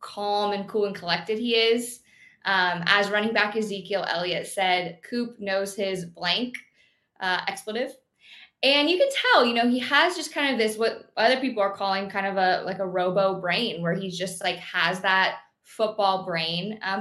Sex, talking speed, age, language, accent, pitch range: female, 185 wpm, 20-39, English, American, 190-230 Hz